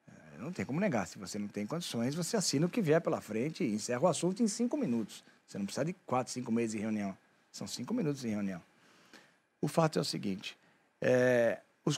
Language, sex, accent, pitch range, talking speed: Portuguese, male, Brazilian, 125-185 Hz, 220 wpm